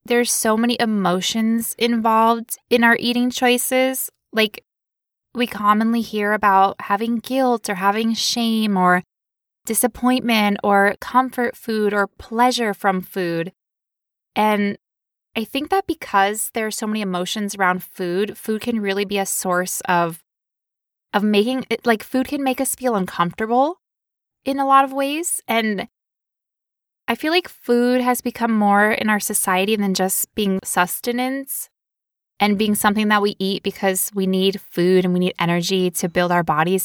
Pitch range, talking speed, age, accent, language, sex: 195-245 Hz, 155 wpm, 20-39, American, English, female